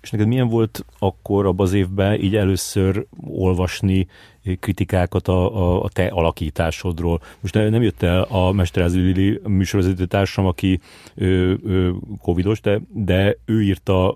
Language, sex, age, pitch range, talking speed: Hungarian, male, 30-49, 85-100 Hz, 140 wpm